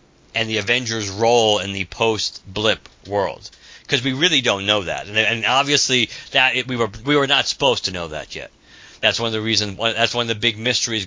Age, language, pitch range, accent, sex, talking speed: 50-69, English, 100-125 Hz, American, male, 215 wpm